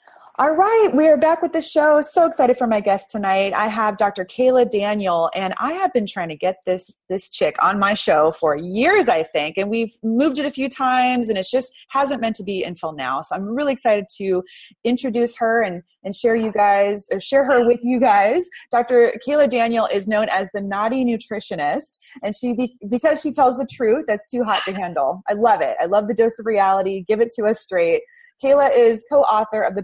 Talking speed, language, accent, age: 220 wpm, English, American, 20-39